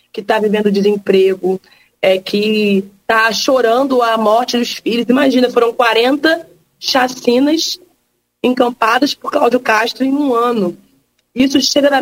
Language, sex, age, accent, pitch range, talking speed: Portuguese, female, 20-39, Brazilian, 215-270 Hz, 125 wpm